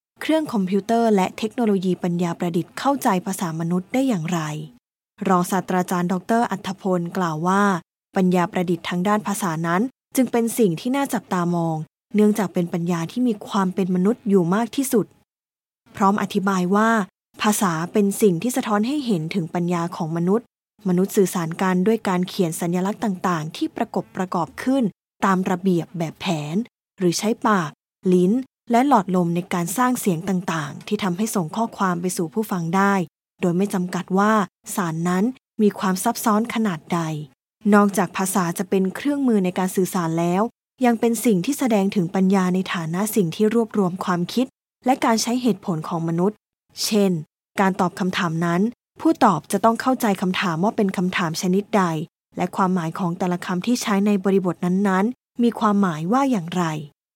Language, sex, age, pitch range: English, female, 20-39, 180-220 Hz